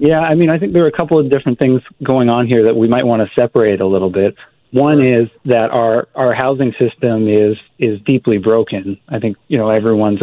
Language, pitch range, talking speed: English, 110-125 Hz, 235 wpm